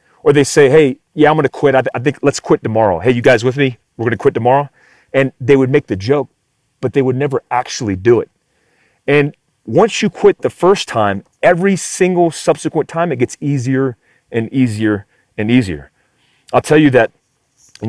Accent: American